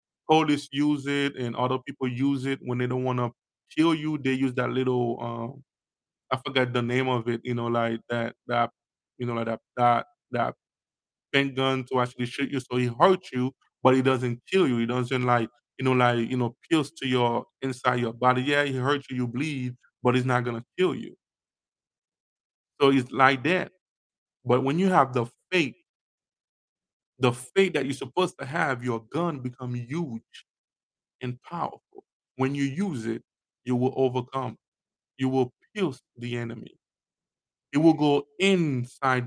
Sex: male